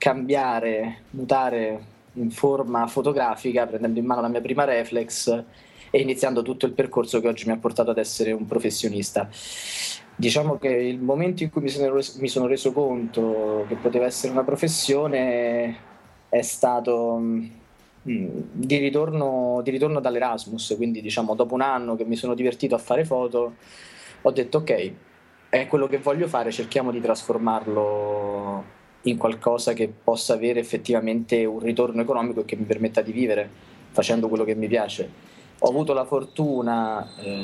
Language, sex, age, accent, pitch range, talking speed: Italian, male, 20-39, native, 110-135 Hz, 160 wpm